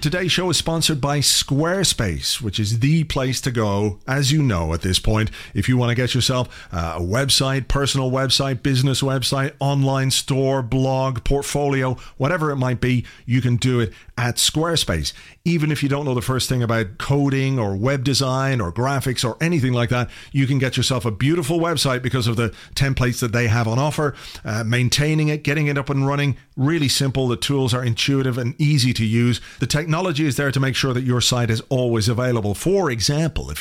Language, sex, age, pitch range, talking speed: English, male, 40-59, 120-140 Hz, 200 wpm